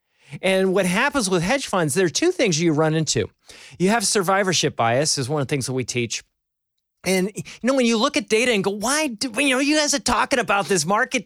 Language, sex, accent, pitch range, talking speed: English, male, American, 180-240 Hz, 245 wpm